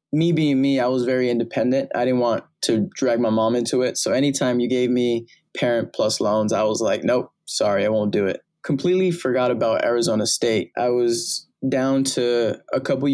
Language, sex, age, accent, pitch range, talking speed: English, male, 20-39, American, 120-135 Hz, 200 wpm